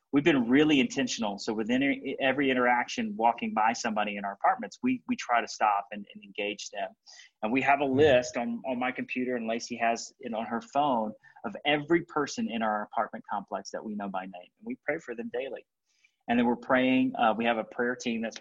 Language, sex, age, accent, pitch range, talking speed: English, male, 30-49, American, 110-140 Hz, 220 wpm